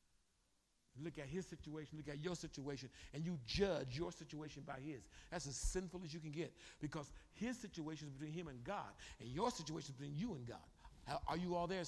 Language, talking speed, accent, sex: English, 215 wpm, American, male